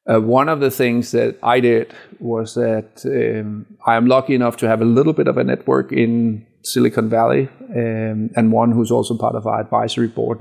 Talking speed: 210 wpm